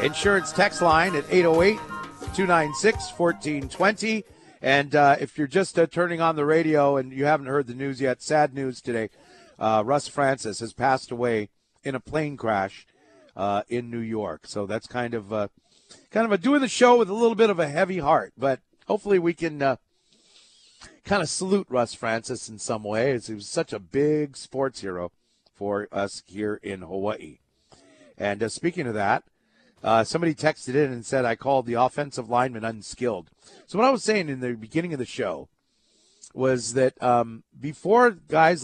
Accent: American